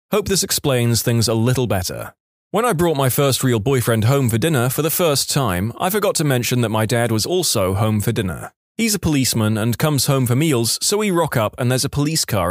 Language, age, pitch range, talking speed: English, 20-39, 115-155 Hz, 240 wpm